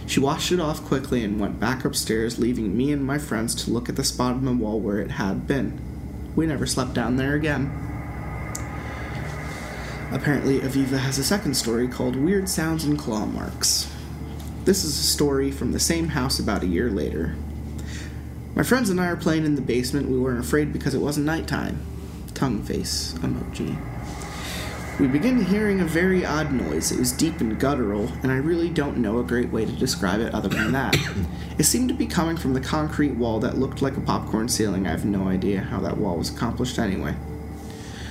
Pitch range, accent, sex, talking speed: 95-145 Hz, American, male, 200 wpm